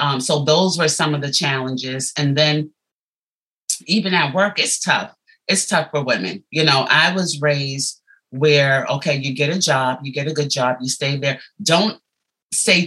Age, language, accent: 30-49, English, American